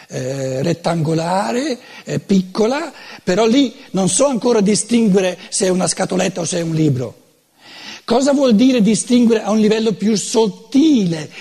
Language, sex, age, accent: Italian, male, 60-79, native